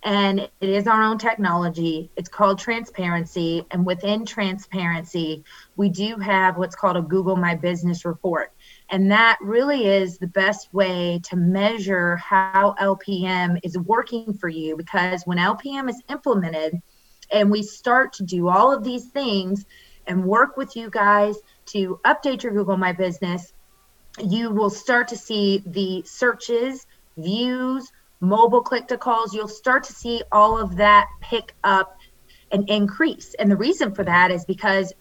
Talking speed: 160 wpm